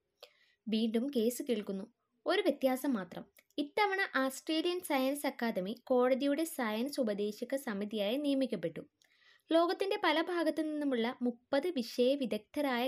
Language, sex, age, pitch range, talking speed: Malayalam, female, 20-39, 215-270 Hz, 100 wpm